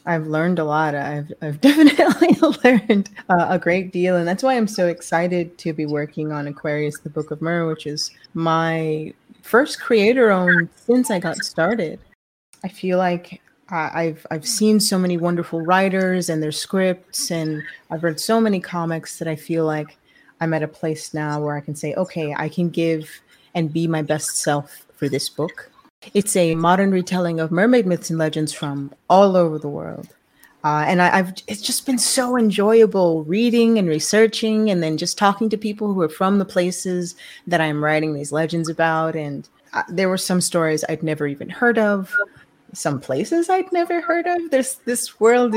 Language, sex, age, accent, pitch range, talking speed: English, female, 30-49, American, 155-200 Hz, 190 wpm